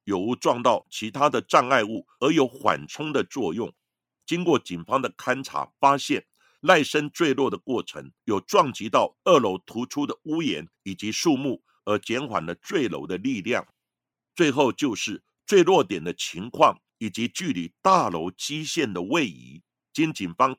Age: 50-69